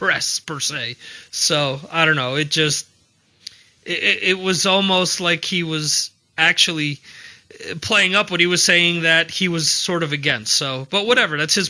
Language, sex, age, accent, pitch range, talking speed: English, male, 30-49, American, 150-180 Hz, 175 wpm